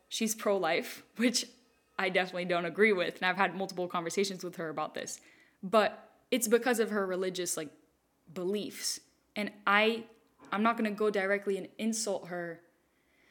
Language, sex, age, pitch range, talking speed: English, female, 10-29, 185-220 Hz, 160 wpm